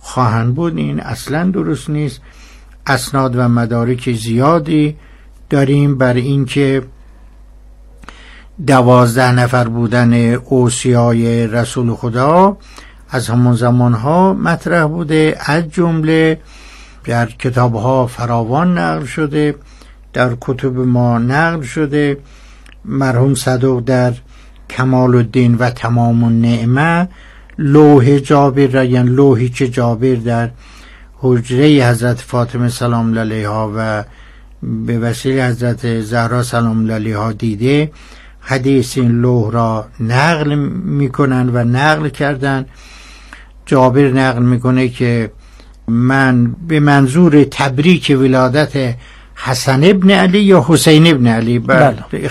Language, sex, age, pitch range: Persian, male, 60-79, 120-145 Hz